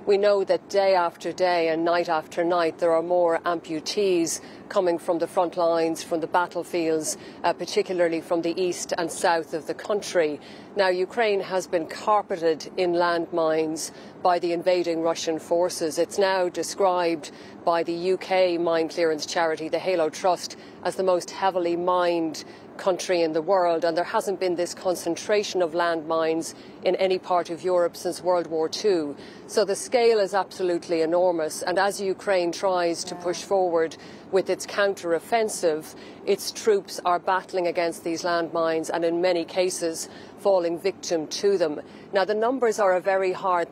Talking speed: 165 wpm